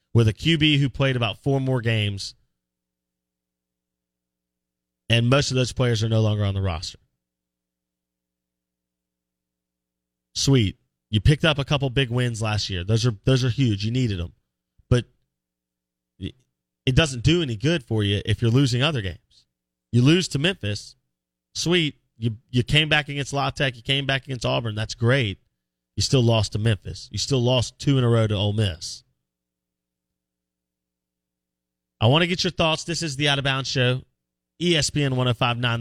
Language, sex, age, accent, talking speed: English, male, 30-49, American, 170 wpm